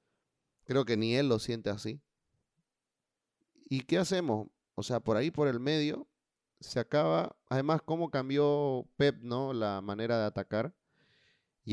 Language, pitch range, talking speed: Spanish, 110-140 Hz, 150 wpm